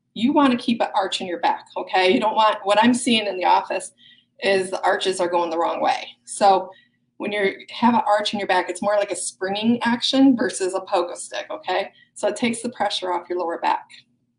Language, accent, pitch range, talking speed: English, American, 180-230 Hz, 235 wpm